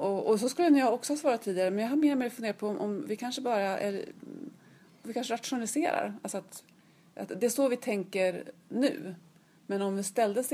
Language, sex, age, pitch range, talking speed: Swedish, female, 30-49, 170-220 Hz, 210 wpm